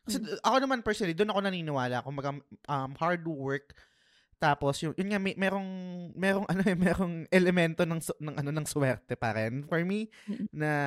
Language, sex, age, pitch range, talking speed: Filipino, male, 20-39, 135-175 Hz, 170 wpm